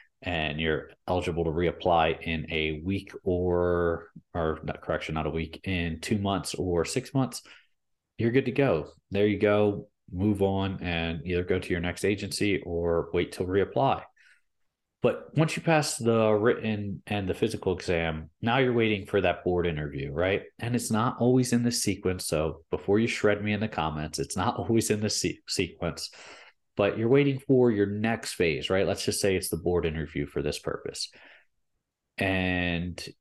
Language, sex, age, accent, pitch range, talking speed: English, male, 30-49, American, 85-105 Hz, 175 wpm